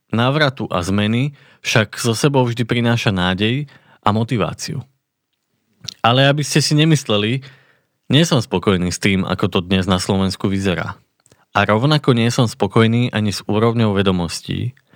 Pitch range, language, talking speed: 100-125 Hz, Slovak, 145 wpm